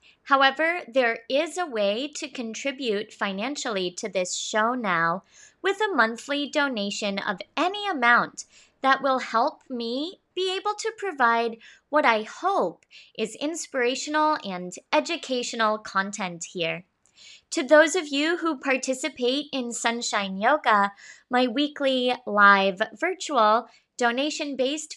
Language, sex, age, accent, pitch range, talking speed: English, female, 20-39, American, 220-300 Hz, 120 wpm